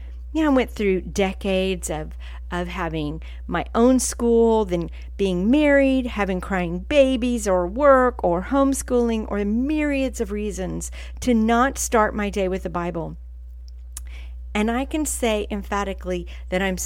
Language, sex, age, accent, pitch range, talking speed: English, female, 40-59, American, 170-230 Hz, 145 wpm